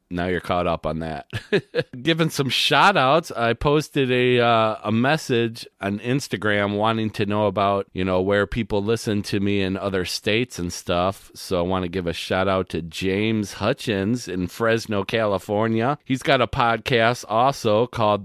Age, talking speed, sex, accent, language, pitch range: 40-59, 175 wpm, male, American, English, 95-125 Hz